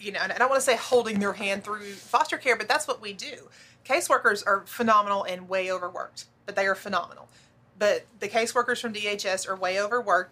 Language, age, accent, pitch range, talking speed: English, 30-49, American, 190-215 Hz, 215 wpm